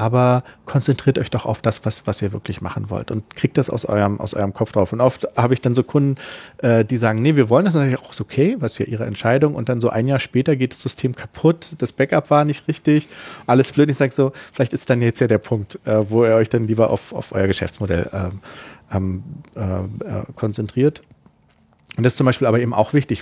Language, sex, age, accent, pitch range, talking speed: German, male, 40-59, German, 105-130 Hz, 245 wpm